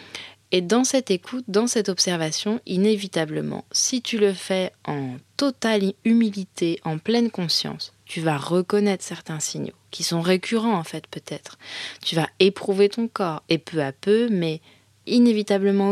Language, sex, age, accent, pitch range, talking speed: French, female, 20-39, French, 160-205 Hz, 150 wpm